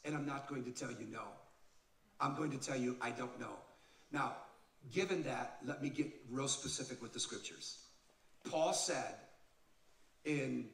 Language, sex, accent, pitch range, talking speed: English, male, American, 125-165 Hz, 170 wpm